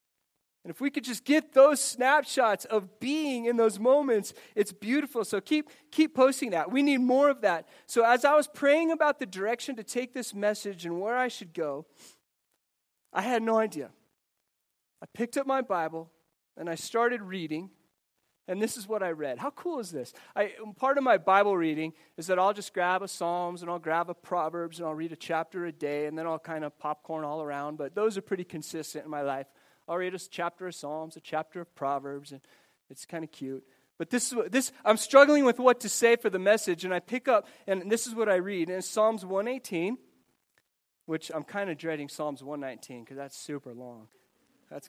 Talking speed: 215 wpm